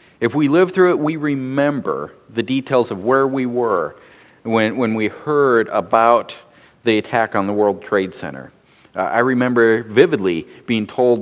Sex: male